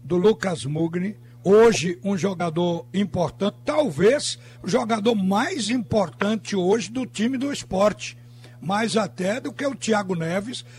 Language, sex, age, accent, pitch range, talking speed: Portuguese, male, 60-79, Brazilian, 165-220 Hz, 135 wpm